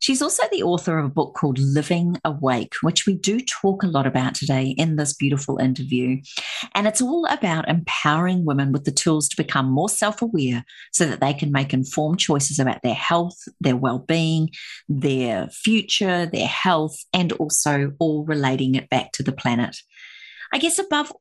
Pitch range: 140-185 Hz